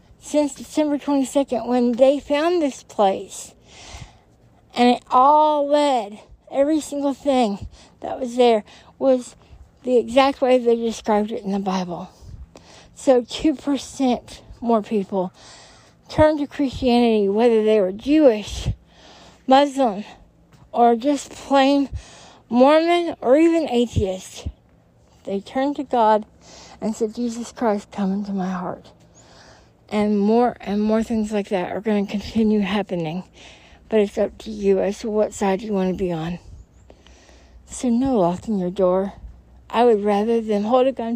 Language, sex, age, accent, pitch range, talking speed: English, female, 60-79, American, 195-255 Hz, 145 wpm